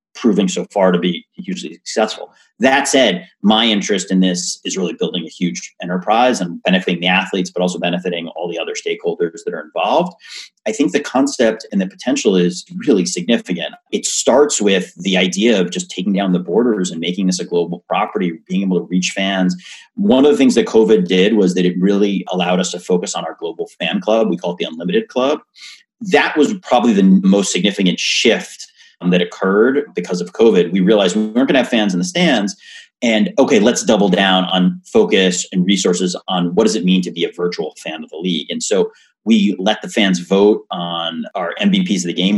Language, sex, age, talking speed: English, male, 30-49, 210 wpm